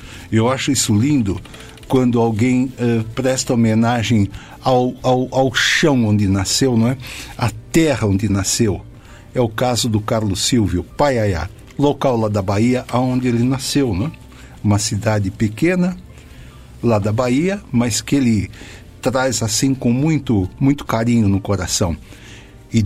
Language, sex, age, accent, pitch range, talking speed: Portuguese, male, 60-79, Brazilian, 105-130 Hz, 140 wpm